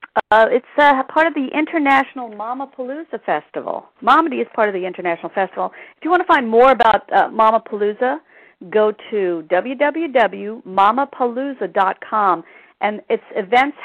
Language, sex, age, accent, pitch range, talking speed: English, female, 50-69, American, 195-260 Hz, 145 wpm